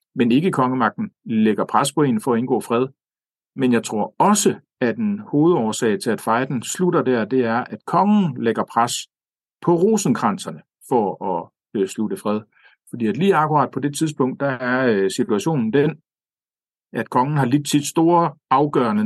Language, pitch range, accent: Danish, 115-150 Hz, native